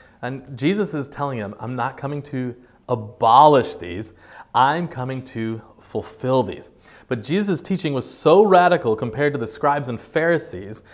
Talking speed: 155 wpm